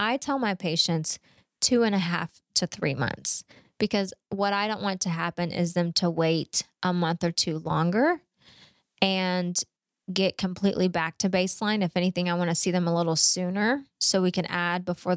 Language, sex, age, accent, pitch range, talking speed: English, female, 20-39, American, 175-200 Hz, 190 wpm